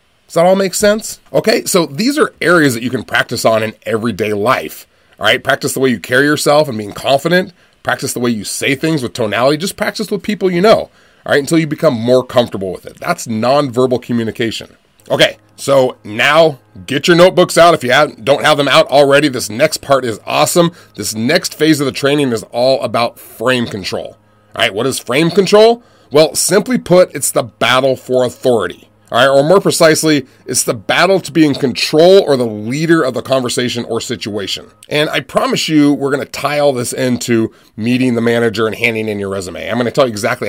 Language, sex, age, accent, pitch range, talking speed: English, male, 30-49, American, 115-160 Hz, 215 wpm